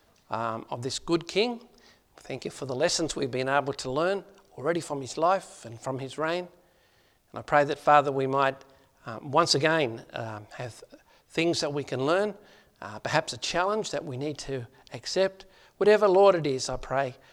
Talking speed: 190 wpm